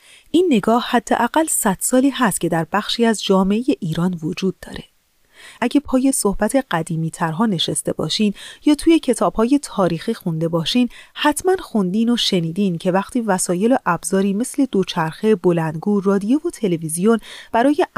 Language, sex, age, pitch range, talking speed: Persian, female, 30-49, 185-255 Hz, 140 wpm